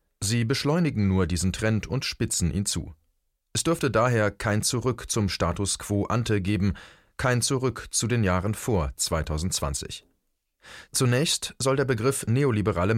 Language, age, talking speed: German, 30-49, 145 wpm